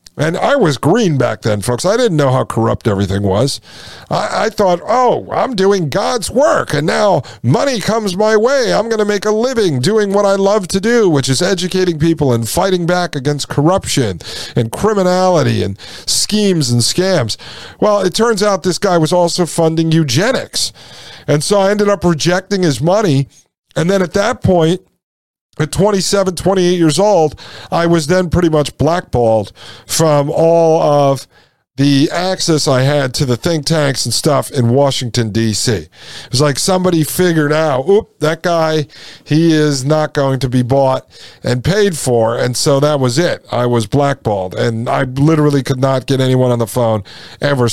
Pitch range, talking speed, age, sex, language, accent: 125-180 Hz, 180 wpm, 50-69, male, English, American